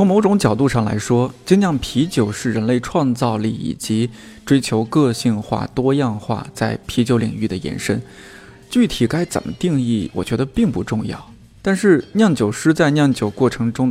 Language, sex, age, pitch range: Chinese, male, 20-39, 110-140 Hz